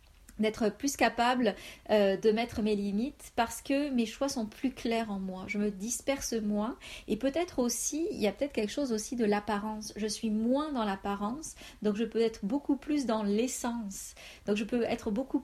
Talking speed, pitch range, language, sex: 200 wpm, 200-245 Hz, French, female